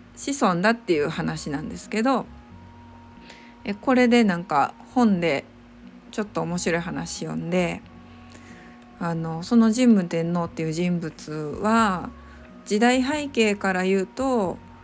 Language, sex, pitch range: Japanese, female, 155-215 Hz